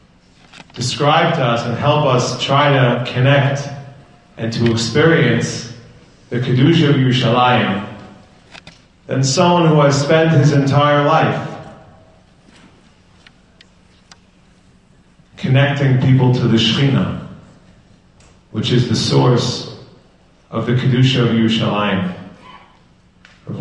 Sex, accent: male, American